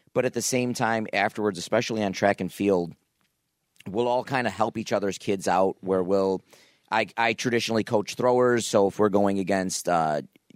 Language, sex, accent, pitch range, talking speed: English, male, American, 105-125 Hz, 190 wpm